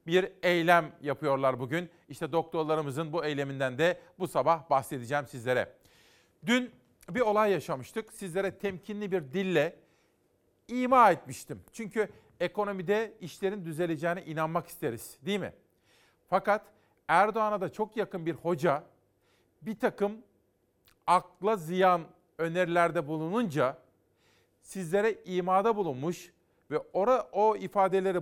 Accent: native